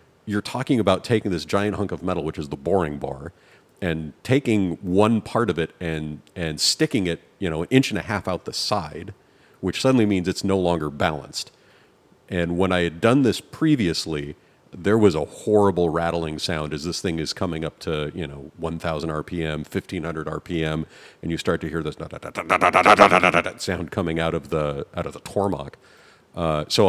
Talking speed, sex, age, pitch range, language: 185 wpm, male, 40-59, 80-95 Hz, English